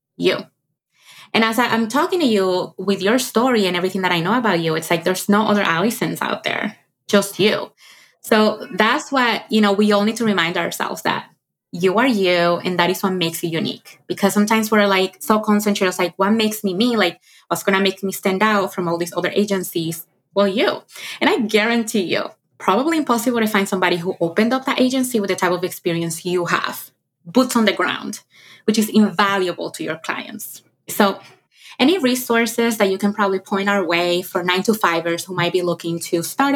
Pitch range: 175-215 Hz